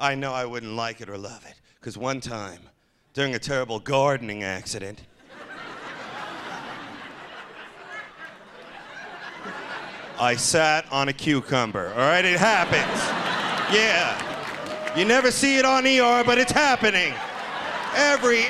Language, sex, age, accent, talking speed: English, male, 40-59, American, 120 wpm